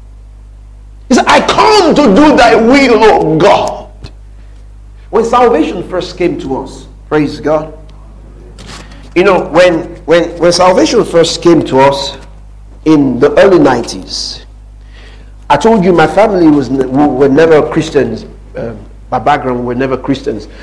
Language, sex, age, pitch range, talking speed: English, male, 50-69, 105-135 Hz, 145 wpm